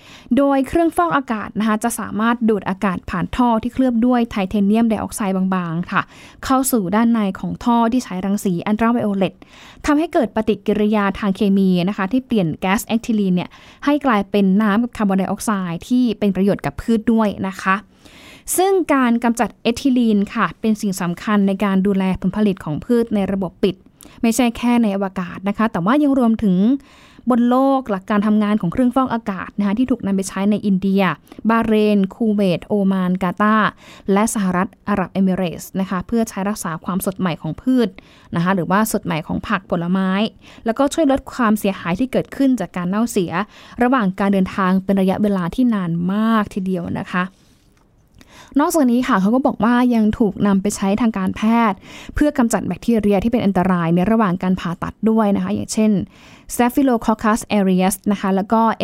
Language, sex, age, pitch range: Thai, female, 10-29, 190-235 Hz